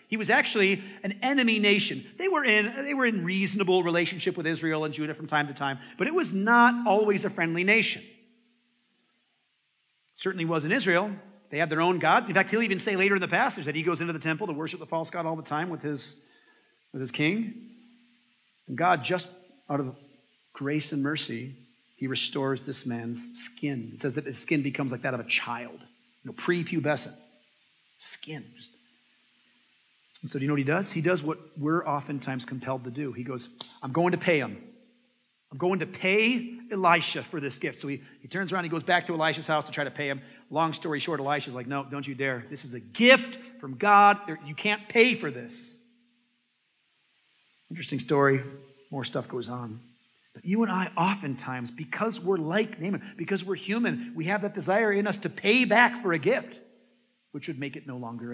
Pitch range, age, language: 140-210 Hz, 40-59, English